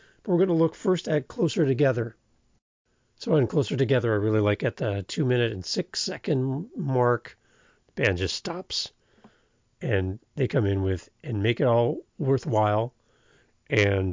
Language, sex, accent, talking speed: English, male, American, 160 wpm